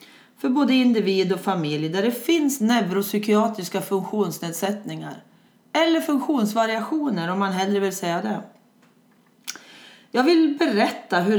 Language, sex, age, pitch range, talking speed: Swedish, female, 30-49, 185-245 Hz, 115 wpm